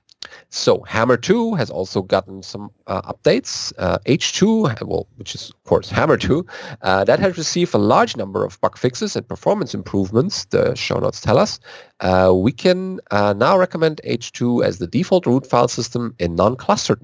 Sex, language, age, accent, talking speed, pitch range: male, English, 40-59, German, 180 wpm, 95-145 Hz